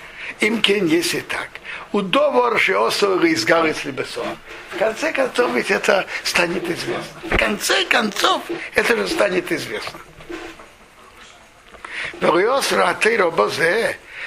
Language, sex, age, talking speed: Russian, male, 60-79, 90 wpm